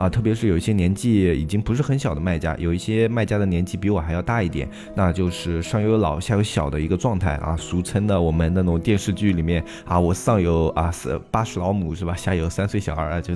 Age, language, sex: 20-39, Chinese, male